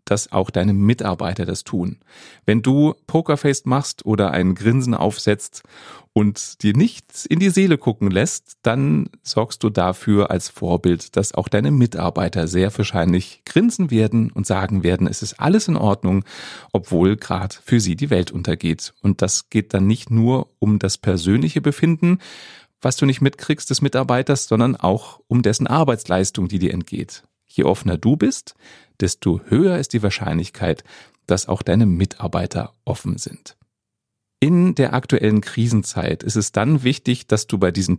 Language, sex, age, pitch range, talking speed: German, male, 30-49, 95-130 Hz, 160 wpm